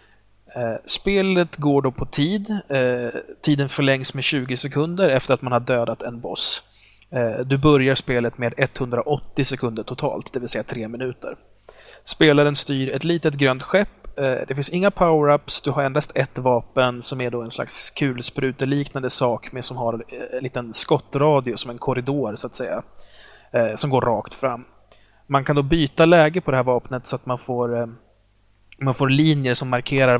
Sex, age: male, 30-49